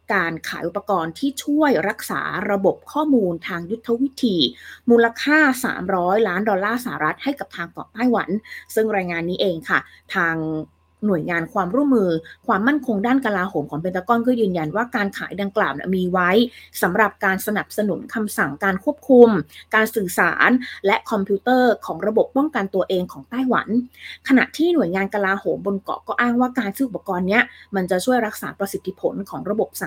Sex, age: female, 20-39